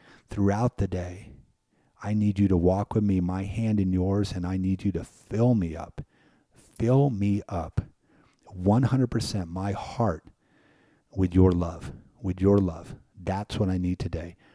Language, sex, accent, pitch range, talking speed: English, male, American, 90-110 Hz, 160 wpm